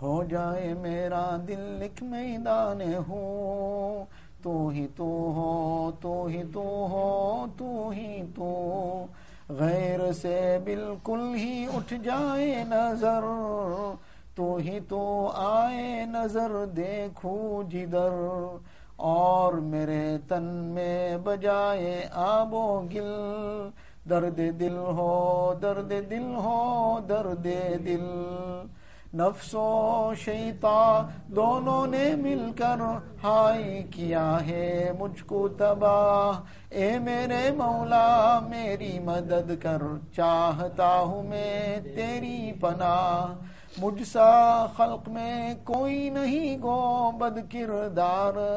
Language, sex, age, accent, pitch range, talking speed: English, male, 50-69, Indian, 180-230 Hz, 75 wpm